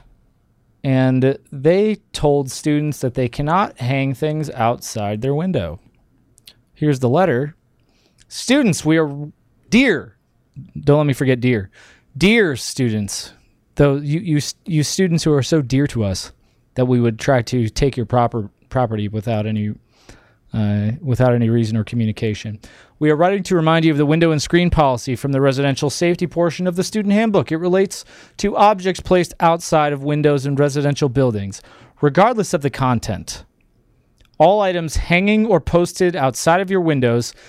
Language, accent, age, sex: English, American, 30-49, male